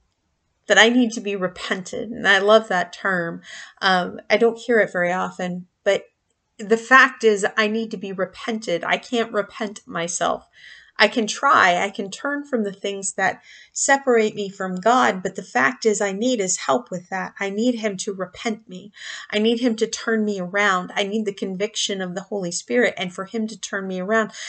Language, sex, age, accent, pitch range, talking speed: English, female, 30-49, American, 185-225 Hz, 205 wpm